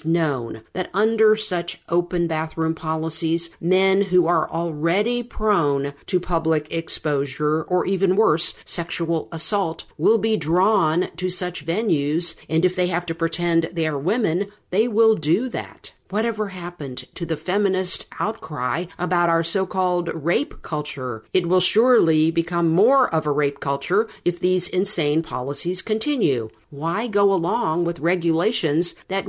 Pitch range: 160-195 Hz